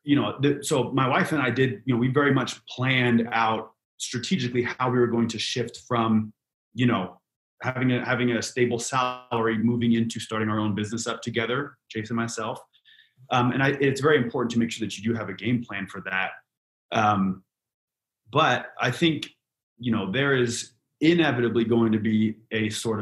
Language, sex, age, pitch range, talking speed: English, male, 30-49, 105-125 Hz, 195 wpm